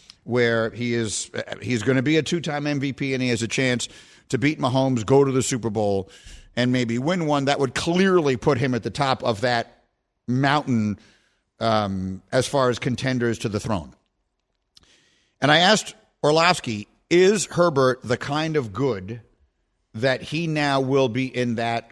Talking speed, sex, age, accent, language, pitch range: 170 wpm, male, 50-69, American, English, 115-140 Hz